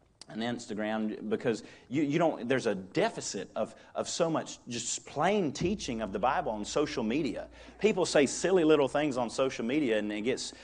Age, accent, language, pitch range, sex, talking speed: 40-59, American, English, 135-185 Hz, male, 185 wpm